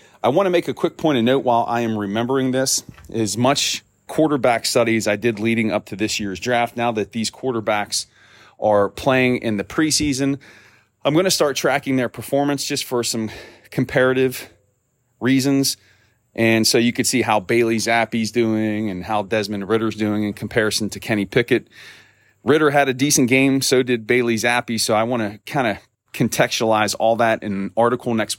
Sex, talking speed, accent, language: male, 185 wpm, American, English